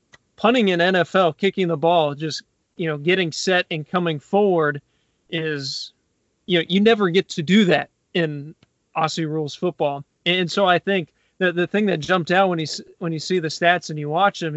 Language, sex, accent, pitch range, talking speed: English, male, American, 160-190 Hz, 200 wpm